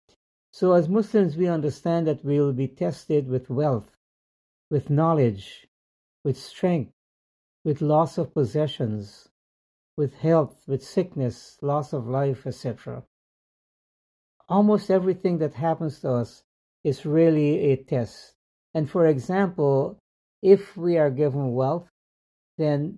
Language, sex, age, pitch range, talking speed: English, male, 60-79, 120-155 Hz, 125 wpm